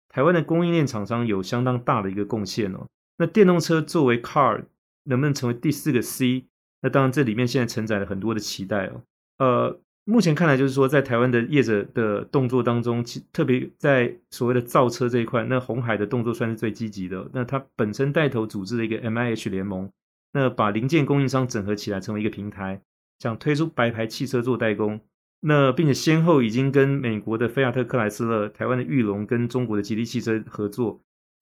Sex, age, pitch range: male, 30-49, 110-135 Hz